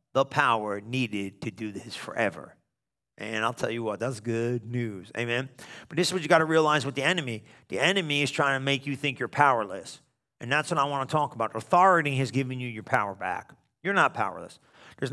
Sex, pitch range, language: male, 120-160 Hz, English